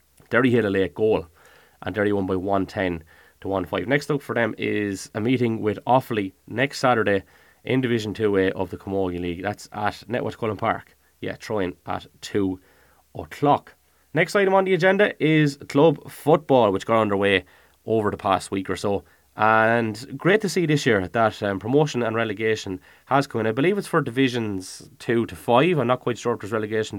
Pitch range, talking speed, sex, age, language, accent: 100-135 Hz, 195 wpm, male, 20-39, English, Irish